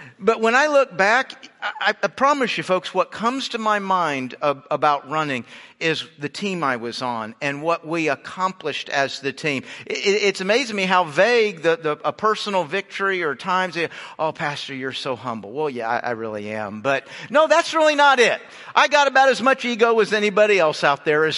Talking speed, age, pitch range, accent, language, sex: 210 wpm, 50-69, 160-225 Hz, American, English, male